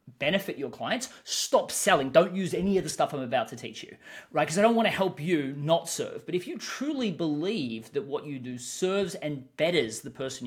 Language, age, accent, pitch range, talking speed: English, 30-49, Australian, 150-225 Hz, 230 wpm